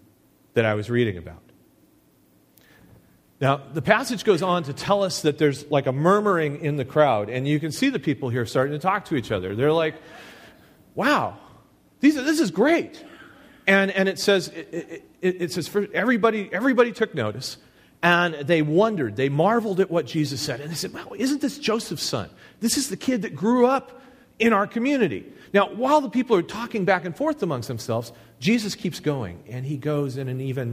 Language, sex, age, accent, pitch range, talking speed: English, male, 40-59, American, 125-200 Hz, 200 wpm